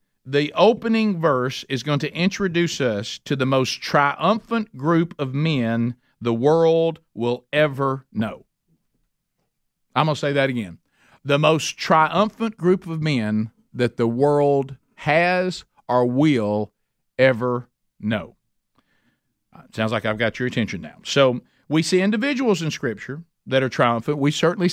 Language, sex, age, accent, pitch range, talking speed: English, male, 50-69, American, 125-165 Hz, 140 wpm